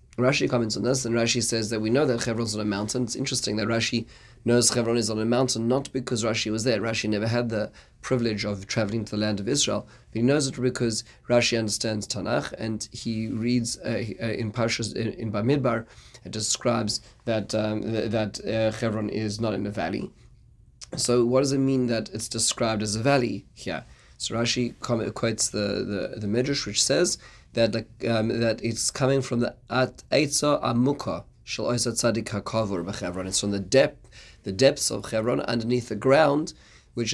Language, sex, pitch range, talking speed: English, male, 110-125 Hz, 185 wpm